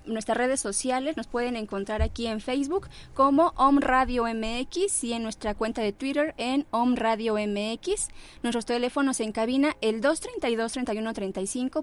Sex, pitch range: female, 200-255 Hz